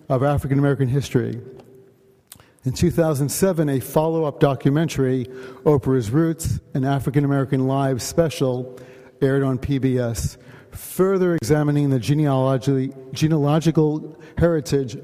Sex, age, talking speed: male, 50-69, 90 wpm